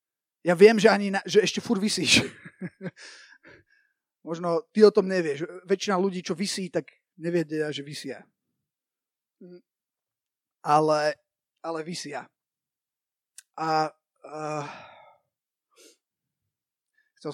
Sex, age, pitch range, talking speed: male, 30-49, 155-200 Hz, 95 wpm